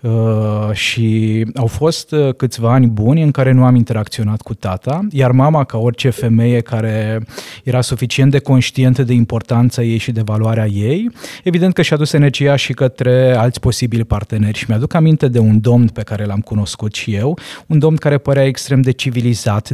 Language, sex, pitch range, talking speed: Romanian, male, 115-145 Hz, 180 wpm